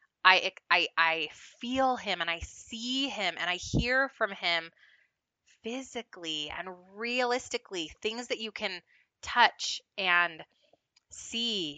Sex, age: female, 20-39